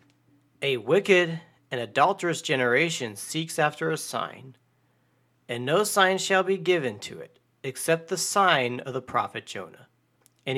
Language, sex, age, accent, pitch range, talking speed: English, male, 40-59, American, 125-185 Hz, 140 wpm